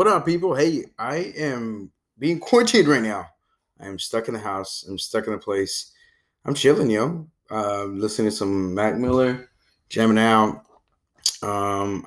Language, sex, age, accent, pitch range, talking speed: English, male, 20-39, American, 105-130 Hz, 165 wpm